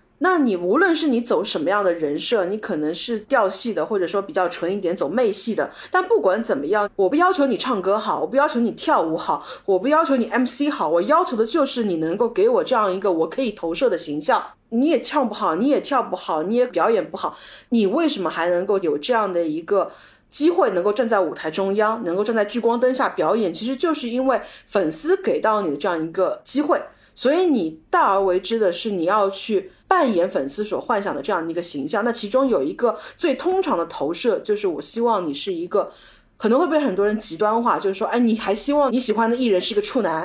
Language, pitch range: Chinese, 195-290 Hz